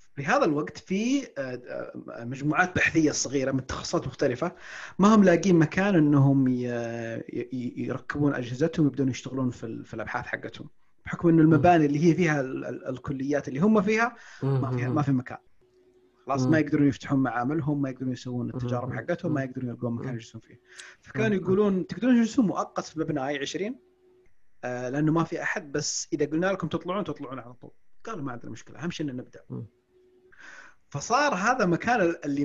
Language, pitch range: Arabic, 135-175 Hz